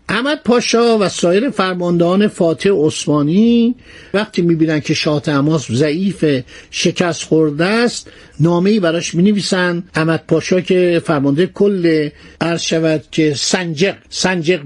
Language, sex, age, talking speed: Persian, male, 50-69, 115 wpm